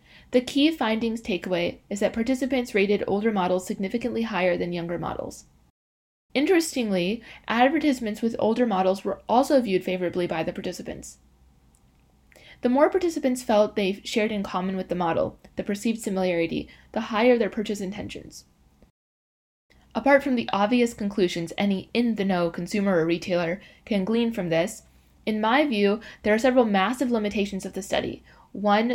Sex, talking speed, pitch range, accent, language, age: female, 150 wpm, 180-225 Hz, American, English, 10-29